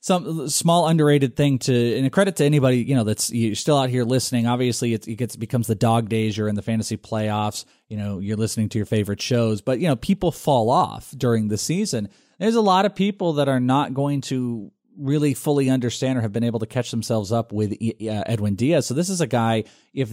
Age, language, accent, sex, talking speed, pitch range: 30-49, English, American, male, 235 wpm, 110-150 Hz